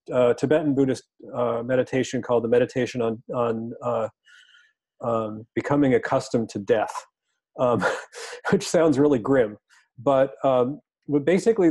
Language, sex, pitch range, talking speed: English, male, 125-160 Hz, 130 wpm